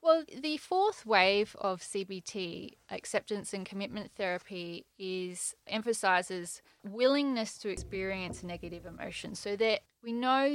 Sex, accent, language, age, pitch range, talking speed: female, Australian, English, 20-39, 180-210 Hz, 120 wpm